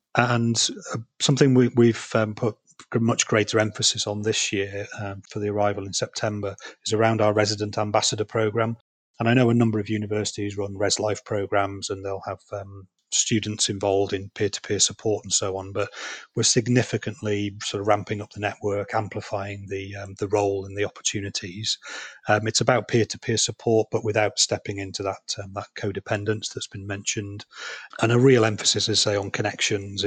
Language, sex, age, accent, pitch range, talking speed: English, male, 30-49, British, 100-110 Hz, 180 wpm